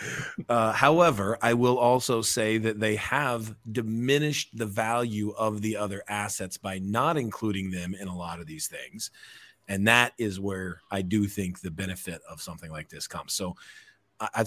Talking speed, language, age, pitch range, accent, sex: 175 wpm, English, 40-59, 105-135 Hz, American, male